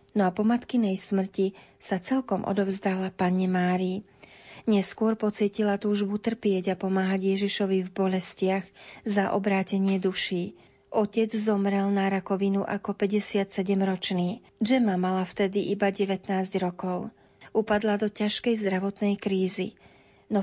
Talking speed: 120 wpm